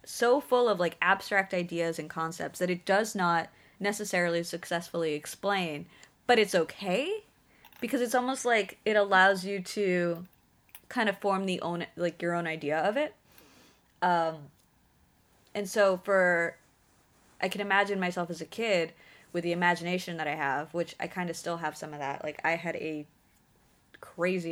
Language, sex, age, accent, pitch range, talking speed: English, female, 20-39, American, 160-195 Hz, 165 wpm